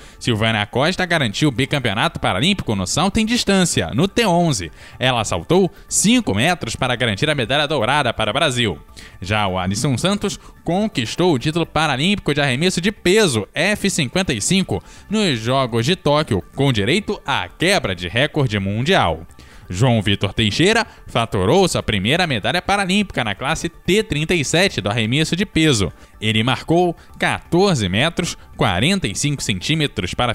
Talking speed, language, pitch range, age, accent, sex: 140 wpm, Portuguese, 110-165 Hz, 10-29, Brazilian, male